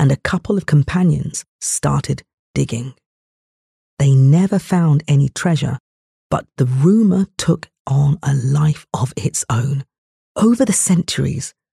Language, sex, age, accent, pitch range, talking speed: English, female, 40-59, British, 140-185 Hz, 130 wpm